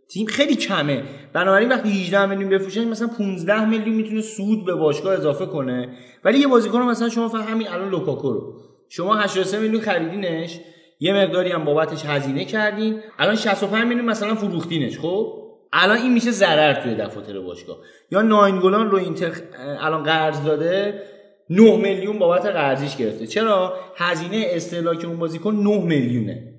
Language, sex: Persian, male